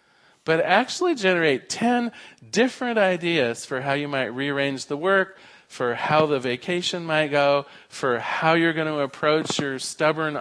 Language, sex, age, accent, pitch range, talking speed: English, male, 40-59, American, 140-195 Hz, 155 wpm